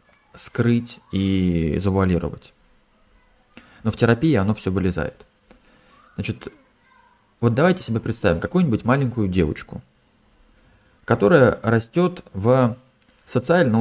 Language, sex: Russian, male